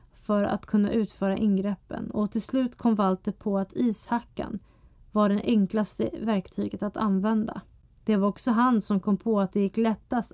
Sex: female